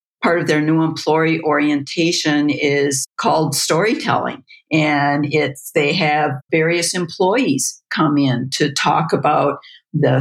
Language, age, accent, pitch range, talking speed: English, 50-69, American, 140-170 Hz, 125 wpm